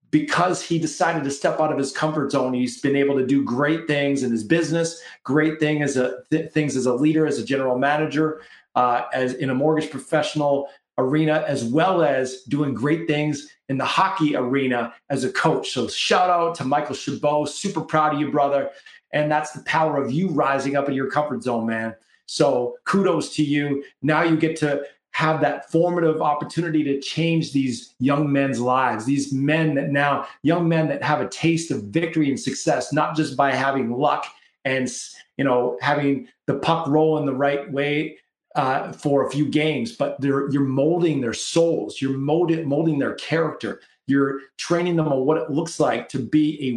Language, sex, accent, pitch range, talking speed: English, male, American, 135-155 Hz, 195 wpm